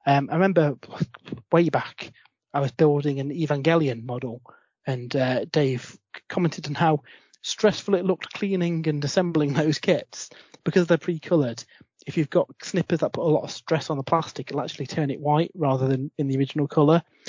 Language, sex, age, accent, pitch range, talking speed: English, male, 30-49, British, 135-170 Hz, 180 wpm